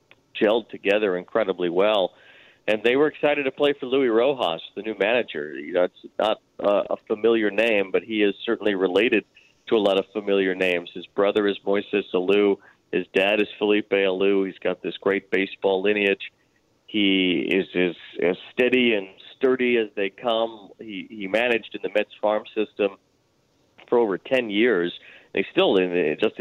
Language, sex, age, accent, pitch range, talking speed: English, male, 40-59, American, 95-125 Hz, 170 wpm